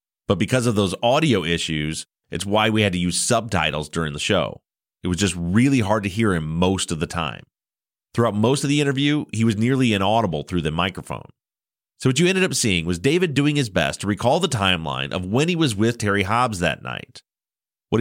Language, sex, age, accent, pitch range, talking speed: English, male, 30-49, American, 90-125 Hz, 215 wpm